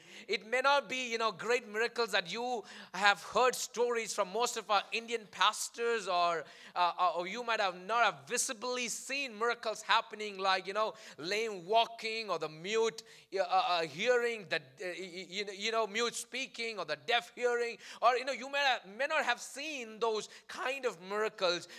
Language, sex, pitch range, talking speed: English, male, 185-240 Hz, 180 wpm